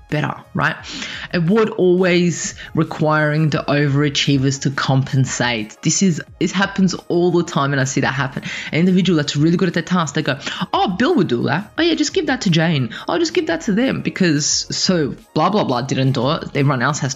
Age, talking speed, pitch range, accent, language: 20-39, 215 wpm, 140-185 Hz, Australian, English